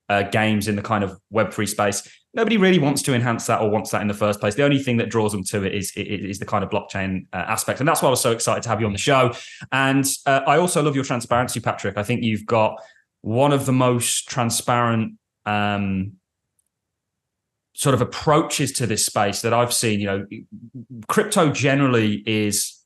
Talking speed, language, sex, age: 220 wpm, English, male, 20-39